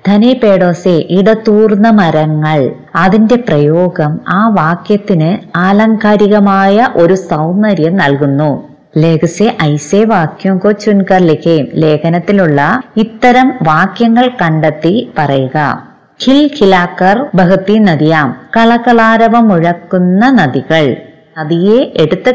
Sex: female